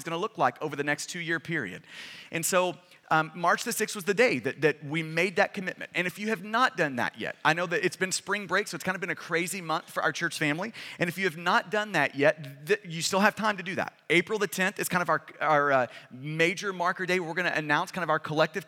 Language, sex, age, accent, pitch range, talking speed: English, male, 30-49, American, 165-195 Hz, 280 wpm